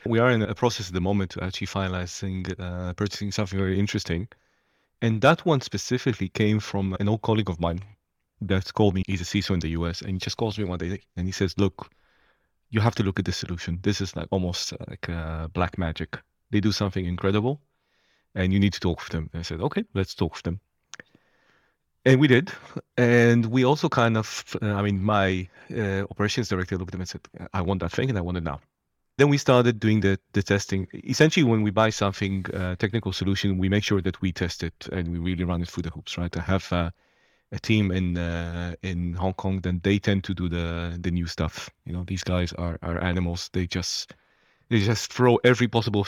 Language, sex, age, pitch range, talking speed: English, male, 30-49, 90-105 Hz, 225 wpm